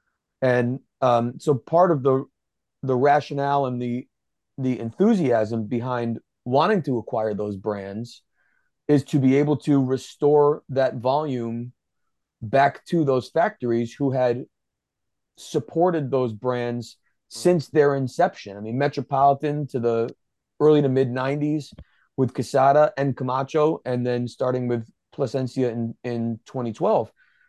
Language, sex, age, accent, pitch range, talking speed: English, male, 30-49, American, 120-145 Hz, 130 wpm